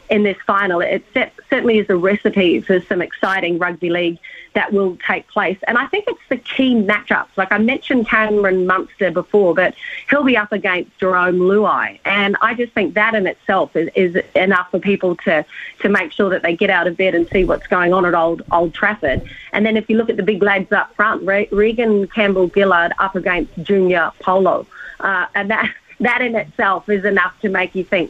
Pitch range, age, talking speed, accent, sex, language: 185-225 Hz, 30-49, 205 wpm, Australian, female, English